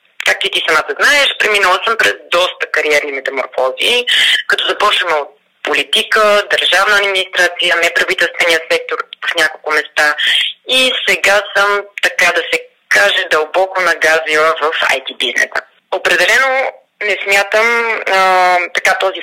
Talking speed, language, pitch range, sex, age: 125 wpm, Bulgarian, 175-240 Hz, female, 20-39